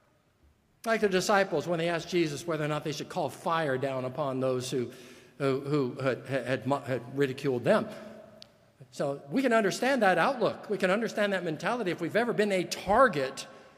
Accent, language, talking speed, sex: American, English, 185 wpm, male